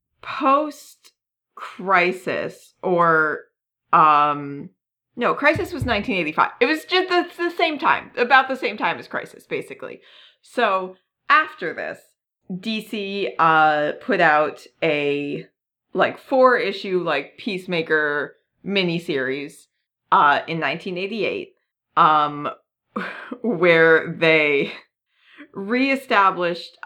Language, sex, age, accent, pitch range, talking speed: English, female, 30-49, American, 160-245 Hz, 95 wpm